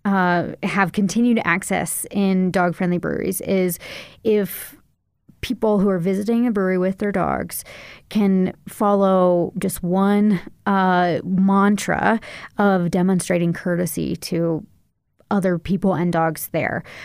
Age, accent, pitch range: 30-49, American, 175-200 Hz